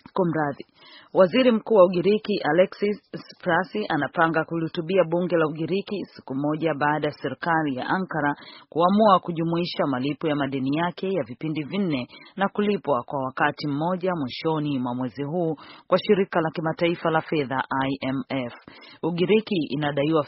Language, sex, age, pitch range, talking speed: Swahili, female, 40-59, 135-175 Hz, 135 wpm